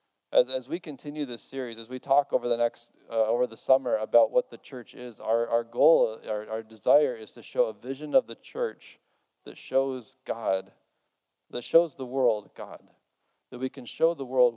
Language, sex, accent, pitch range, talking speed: English, male, American, 110-140 Hz, 200 wpm